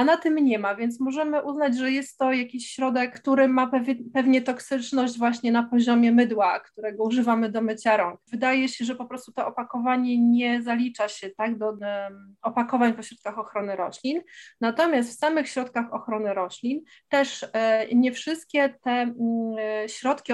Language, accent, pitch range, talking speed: Polish, native, 225-270 Hz, 170 wpm